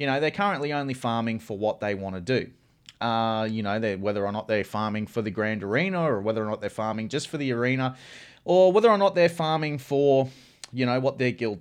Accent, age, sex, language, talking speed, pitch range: Australian, 30-49, male, English, 240 wpm, 125-170 Hz